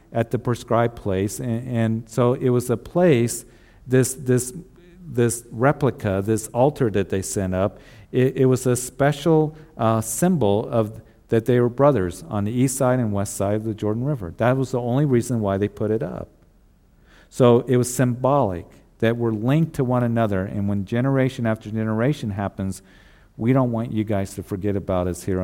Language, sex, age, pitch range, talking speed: English, male, 50-69, 95-120 Hz, 190 wpm